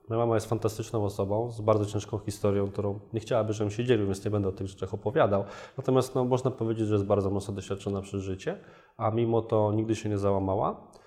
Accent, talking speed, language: native, 215 wpm, Polish